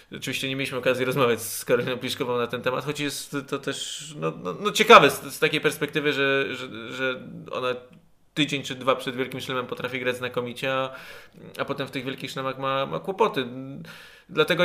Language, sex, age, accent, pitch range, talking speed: Polish, male, 20-39, native, 120-145 Hz, 195 wpm